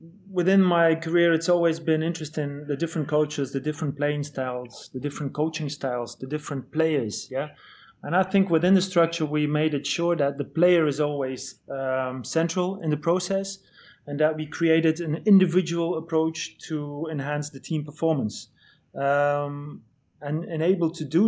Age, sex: 30-49, male